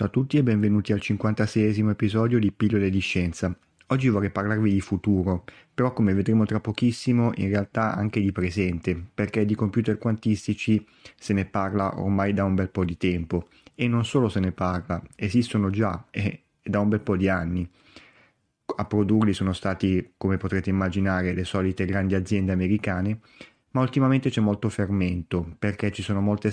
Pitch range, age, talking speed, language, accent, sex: 95-110 Hz, 30-49, 175 wpm, Italian, native, male